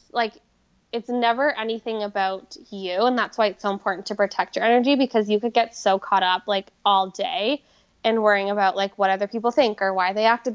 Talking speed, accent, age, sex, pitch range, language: 215 wpm, American, 10-29, female, 200-235 Hz, English